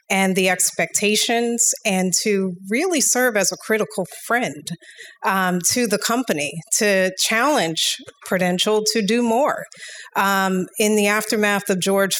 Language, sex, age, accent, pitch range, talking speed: English, female, 30-49, American, 190-225 Hz, 135 wpm